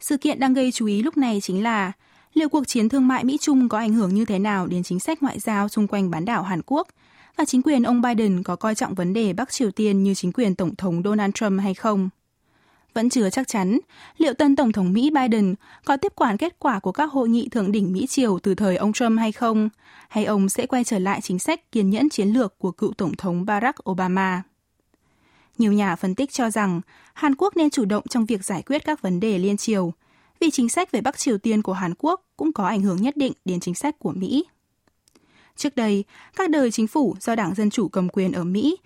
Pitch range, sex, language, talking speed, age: 195-270 Hz, female, Vietnamese, 240 wpm, 20-39